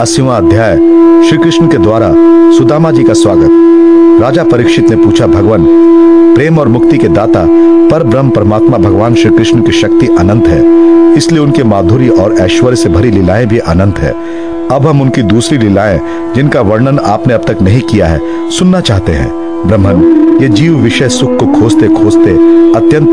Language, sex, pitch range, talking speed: Hindi, male, 110-170 Hz, 65 wpm